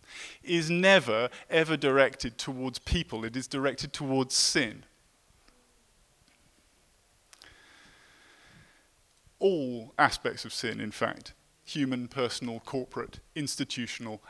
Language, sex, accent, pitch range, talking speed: English, male, British, 125-160 Hz, 90 wpm